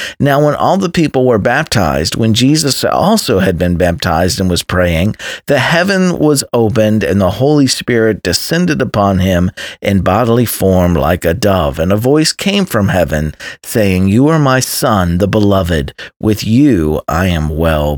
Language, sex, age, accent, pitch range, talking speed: English, male, 40-59, American, 95-145 Hz, 170 wpm